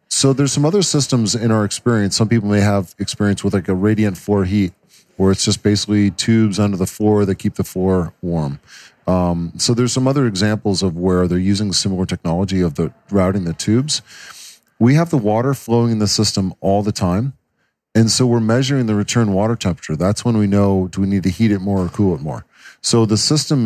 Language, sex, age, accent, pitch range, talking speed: English, male, 40-59, American, 100-120 Hz, 220 wpm